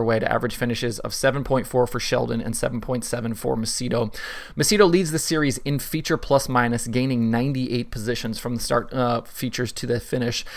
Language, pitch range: English, 115-135 Hz